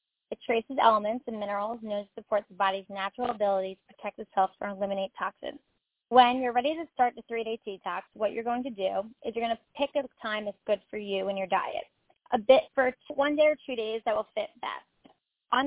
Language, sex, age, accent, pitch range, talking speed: English, female, 20-39, American, 205-245 Hz, 220 wpm